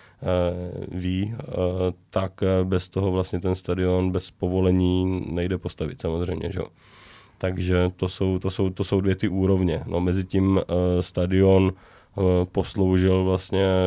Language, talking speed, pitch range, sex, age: Czech, 130 wpm, 90-95 Hz, male, 30-49